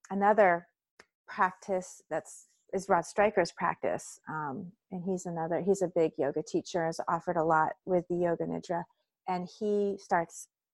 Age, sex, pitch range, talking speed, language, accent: 40-59, female, 180-225 Hz, 150 wpm, English, American